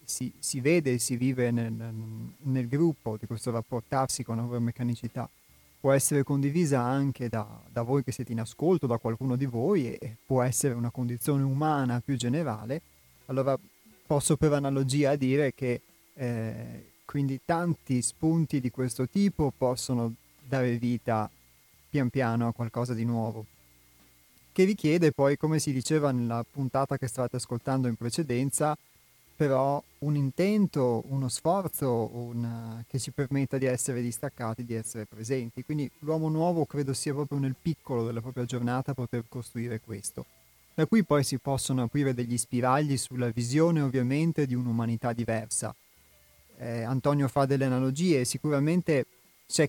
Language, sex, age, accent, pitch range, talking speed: Italian, male, 30-49, native, 120-140 Hz, 145 wpm